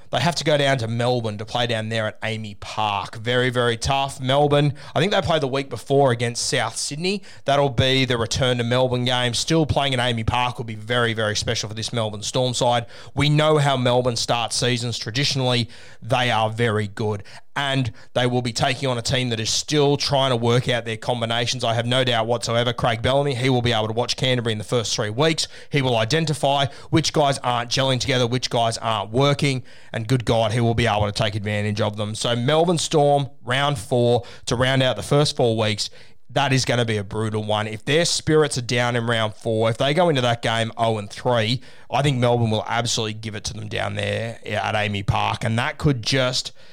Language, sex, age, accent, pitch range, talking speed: English, male, 20-39, Australian, 115-140 Hz, 225 wpm